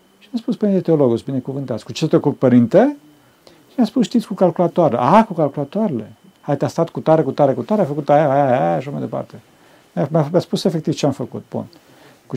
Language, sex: Romanian, male